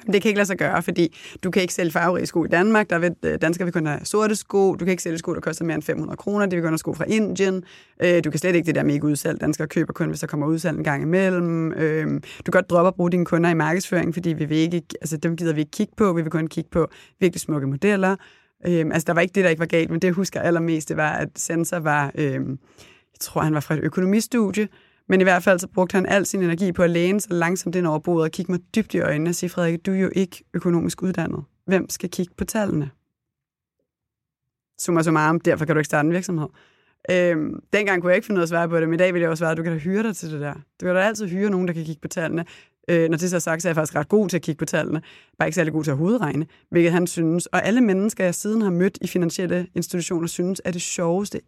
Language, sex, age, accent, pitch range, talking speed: Danish, female, 20-39, native, 160-185 Hz, 280 wpm